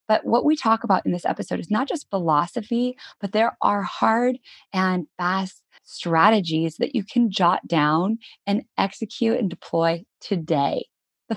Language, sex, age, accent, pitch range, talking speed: English, female, 20-39, American, 175-245 Hz, 160 wpm